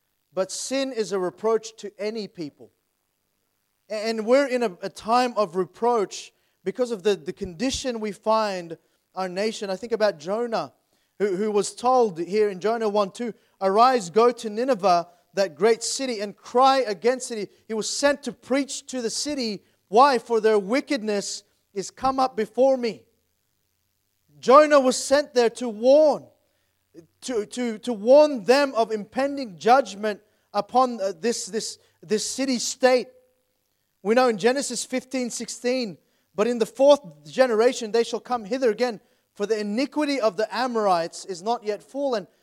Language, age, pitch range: English, 30-49, 195-250 Hz